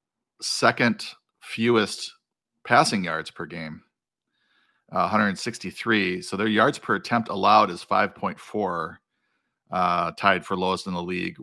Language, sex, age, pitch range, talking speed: English, male, 40-59, 90-105 Hz, 110 wpm